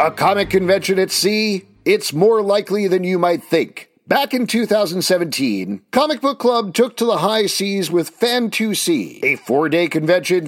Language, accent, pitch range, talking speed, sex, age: English, American, 160-225 Hz, 160 wpm, male, 40-59